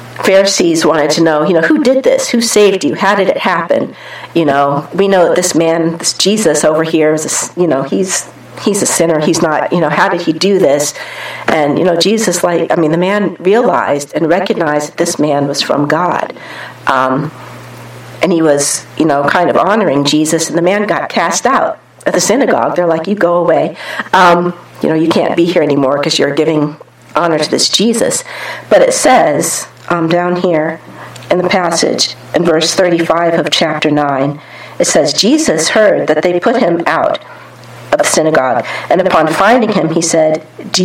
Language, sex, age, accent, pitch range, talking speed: English, female, 50-69, American, 155-195 Hz, 200 wpm